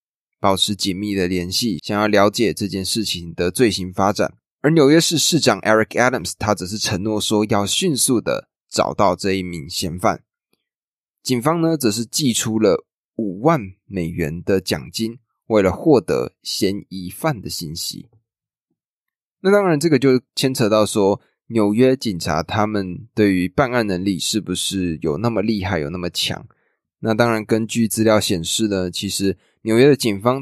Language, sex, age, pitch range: Chinese, male, 20-39, 95-120 Hz